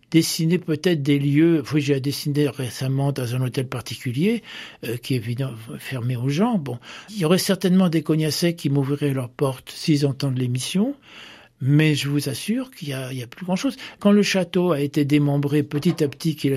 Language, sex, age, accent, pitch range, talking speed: French, male, 60-79, French, 135-175 Hz, 190 wpm